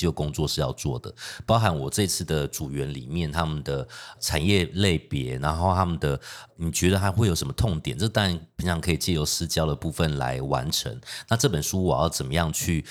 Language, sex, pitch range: Chinese, male, 75-100 Hz